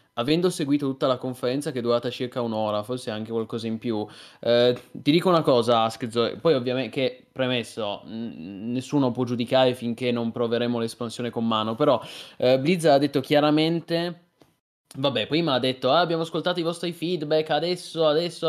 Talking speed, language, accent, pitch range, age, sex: 170 wpm, Italian, native, 120-160 Hz, 20-39, male